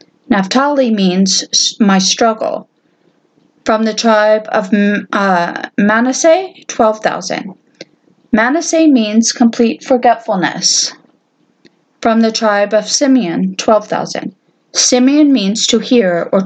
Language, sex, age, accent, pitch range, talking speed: English, female, 40-59, American, 200-250 Hz, 95 wpm